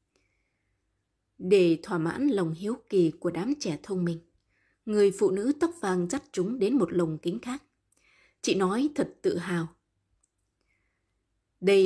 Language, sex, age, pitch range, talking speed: Vietnamese, female, 20-39, 165-220 Hz, 145 wpm